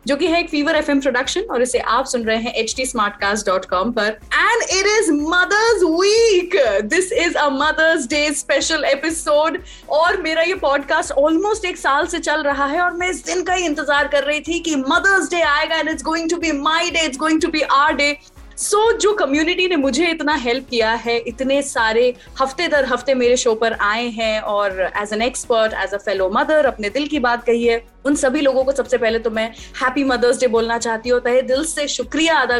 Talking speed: 215 wpm